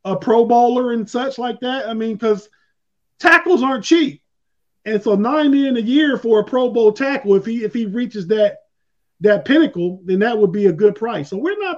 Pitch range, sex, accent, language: 185-220 Hz, male, American, English